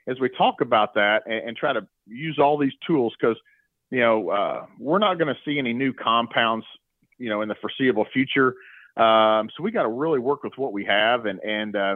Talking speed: 220 wpm